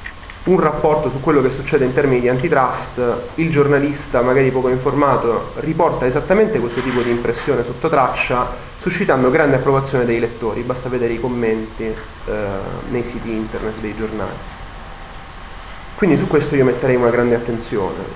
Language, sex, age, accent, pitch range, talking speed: Italian, male, 30-49, native, 120-140 Hz, 150 wpm